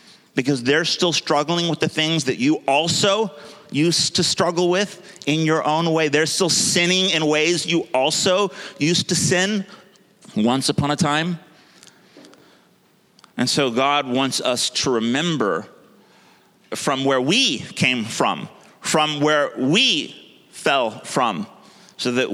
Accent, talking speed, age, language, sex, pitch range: American, 135 wpm, 30-49, English, male, 120-160 Hz